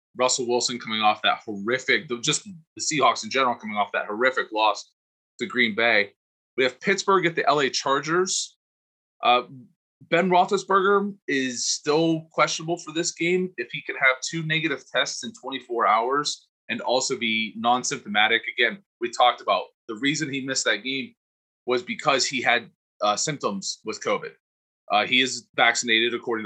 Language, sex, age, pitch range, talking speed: English, male, 20-39, 115-180 Hz, 165 wpm